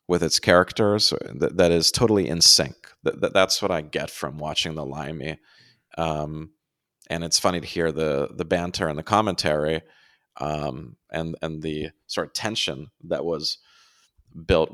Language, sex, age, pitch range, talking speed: English, male, 30-49, 80-90 Hz, 155 wpm